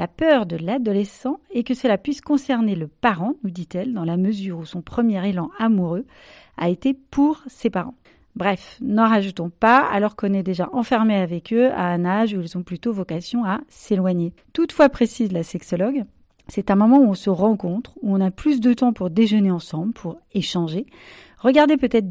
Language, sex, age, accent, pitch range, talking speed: French, female, 40-59, French, 190-265 Hz, 195 wpm